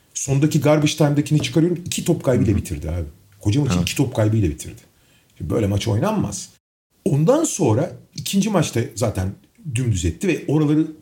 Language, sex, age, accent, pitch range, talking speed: Turkish, male, 40-59, native, 115-185 Hz, 145 wpm